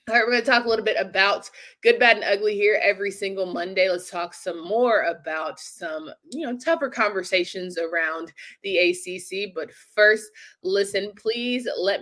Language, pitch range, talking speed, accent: English, 180-250 Hz, 180 wpm, American